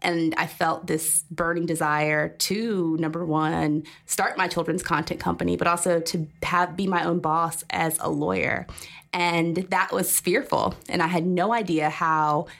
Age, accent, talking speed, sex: 20-39, American, 165 wpm, female